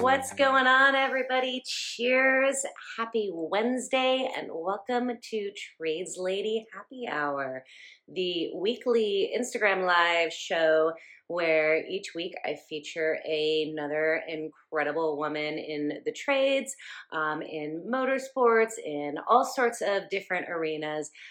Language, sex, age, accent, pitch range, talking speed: English, female, 30-49, American, 155-230 Hz, 110 wpm